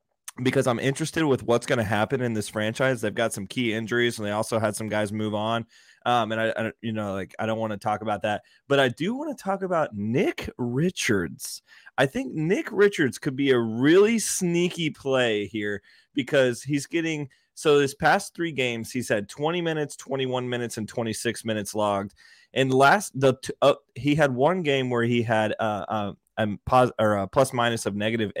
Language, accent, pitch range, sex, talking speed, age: English, American, 110-135 Hz, male, 205 wpm, 20-39